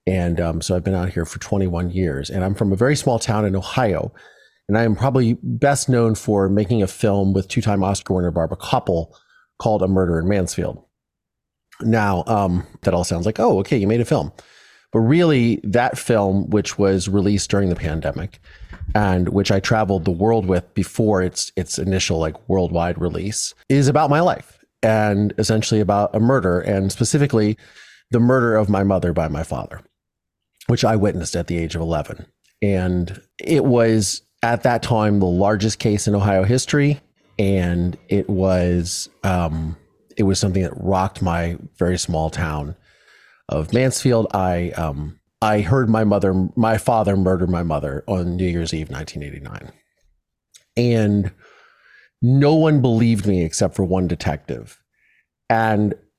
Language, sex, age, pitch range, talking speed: English, male, 30-49, 90-110 Hz, 165 wpm